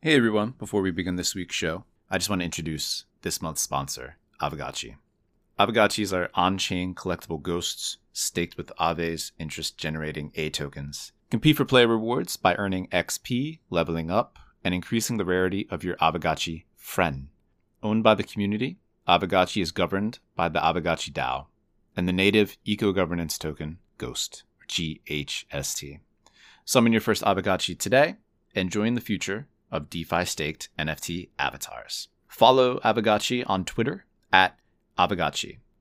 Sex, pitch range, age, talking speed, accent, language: male, 85-110 Hz, 30-49, 140 wpm, American, English